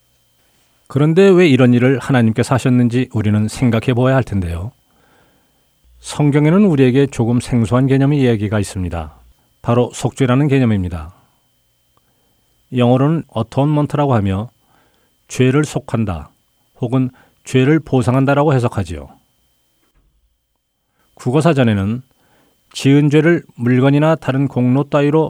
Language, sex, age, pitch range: Korean, male, 40-59, 105-140 Hz